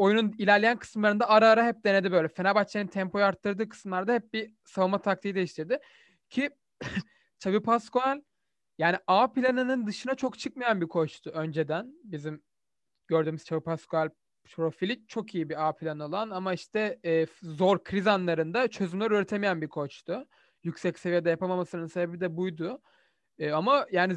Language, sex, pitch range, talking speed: Turkish, male, 160-220 Hz, 145 wpm